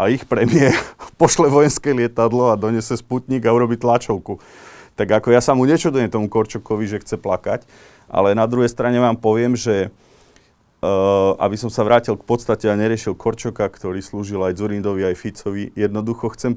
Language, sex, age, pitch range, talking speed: Slovak, male, 30-49, 105-120 Hz, 175 wpm